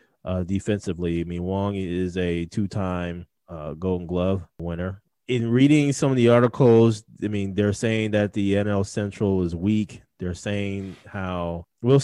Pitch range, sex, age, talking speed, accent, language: 95-120 Hz, male, 30-49, 155 wpm, American, English